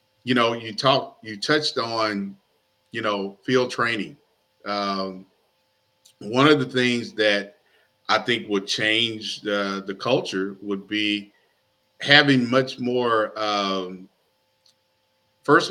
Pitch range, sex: 100-125 Hz, male